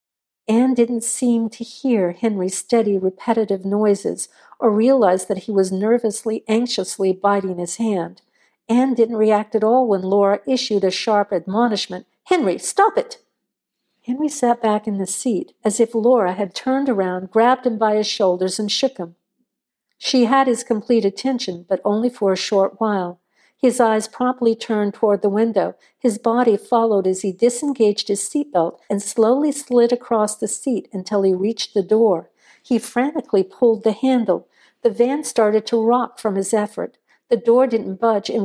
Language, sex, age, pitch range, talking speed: English, female, 50-69, 200-240 Hz, 170 wpm